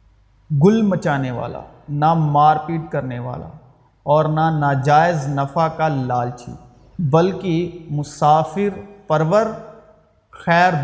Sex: male